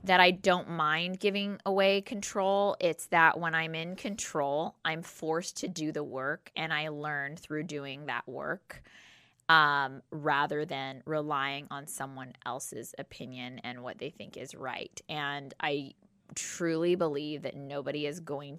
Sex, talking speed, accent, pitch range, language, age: female, 155 wpm, American, 145-175 Hz, English, 20-39